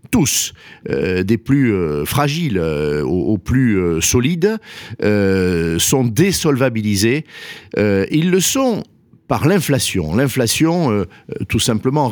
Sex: male